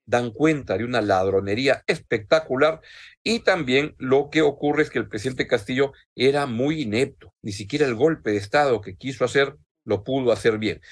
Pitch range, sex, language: 115-155 Hz, male, Spanish